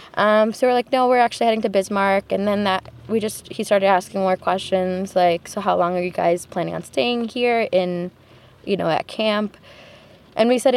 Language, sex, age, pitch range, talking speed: English, female, 20-39, 175-220 Hz, 215 wpm